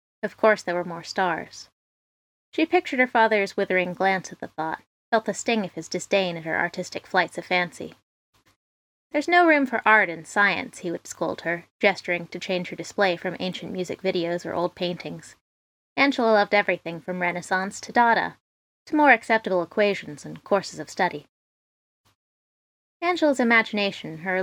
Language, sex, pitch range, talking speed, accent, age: English, female, 175-230 Hz, 165 wpm, American, 20-39